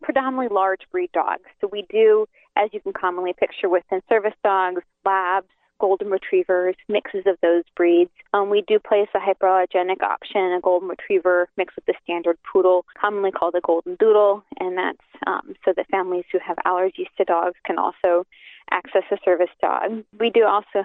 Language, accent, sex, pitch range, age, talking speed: English, American, female, 185-225 Hz, 20-39, 180 wpm